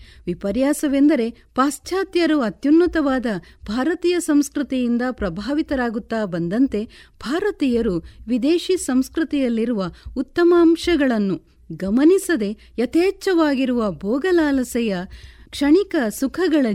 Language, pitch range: Kannada, 210-315 Hz